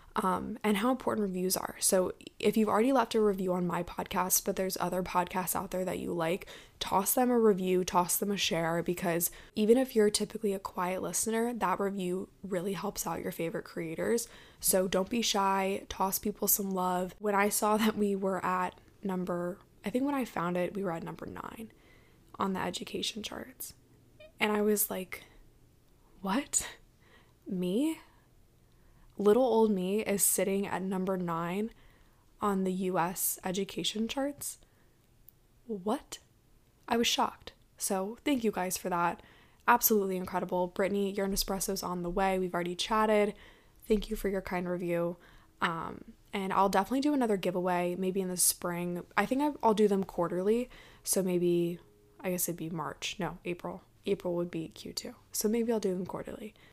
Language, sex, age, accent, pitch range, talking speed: English, female, 10-29, American, 180-215 Hz, 170 wpm